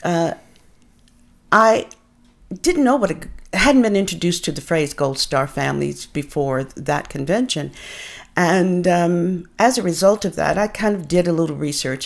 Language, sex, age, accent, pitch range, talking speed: English, female, 50-69, American, 155-200 Hz, 160 wpm